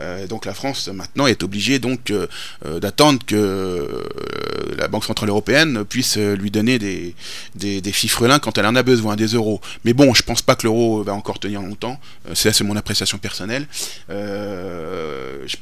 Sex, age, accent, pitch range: male, 30-49, French, 100-135 Hz